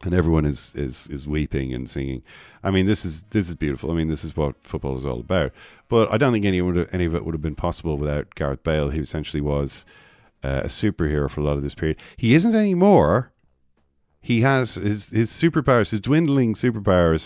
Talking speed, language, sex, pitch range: 220 wpm, English, male, 70-100 Hz